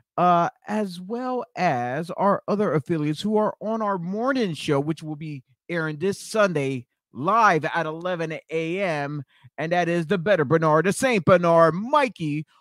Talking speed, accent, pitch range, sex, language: 155 wpm, American, 140-215 Hz, male, English